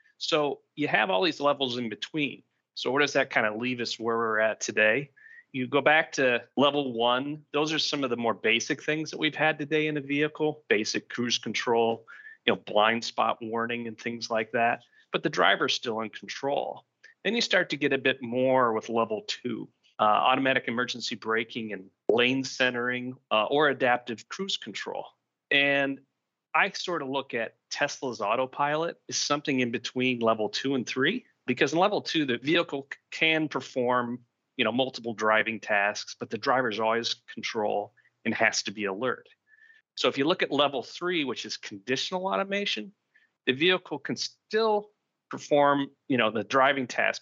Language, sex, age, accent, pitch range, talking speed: English, male, 30-49, American, 115-150 Hz, 180 wpm